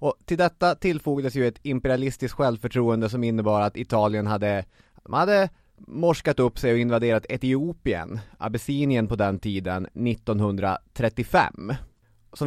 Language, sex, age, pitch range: English, male, 30-49, 100-130 Hz